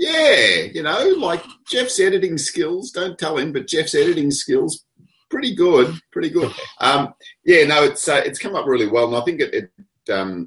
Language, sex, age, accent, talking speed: English, male, 30-49, Australian, 195 wpm